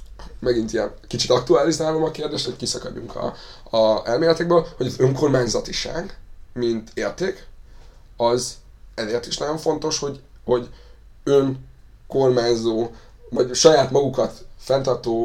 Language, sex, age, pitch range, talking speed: Hungarian, male, 20-39, 115-130 Hz, 110 wpm